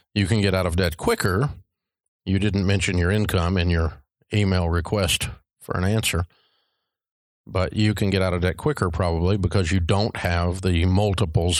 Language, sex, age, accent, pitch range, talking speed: English, male, 50-69, American, 90-105 Hz, 175 wpm